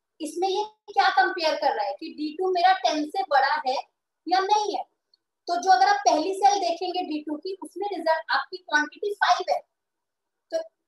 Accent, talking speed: Indian, 180 wpm